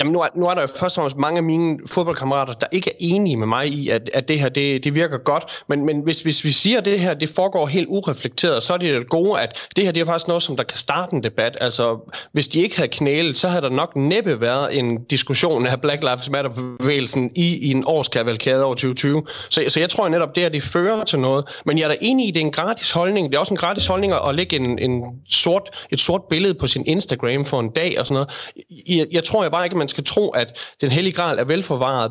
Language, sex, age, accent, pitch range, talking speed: Danish, male, 30-49, native, 135-175 Hz, 275 wpm